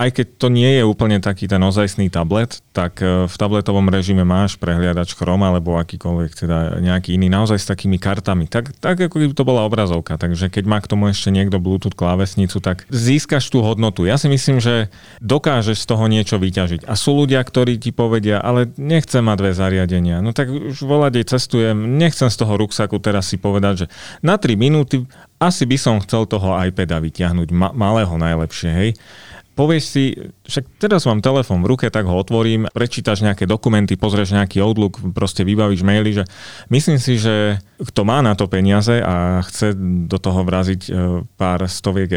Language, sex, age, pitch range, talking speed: Slovak, male, 30-49, 95-120 Hz, 185 wpm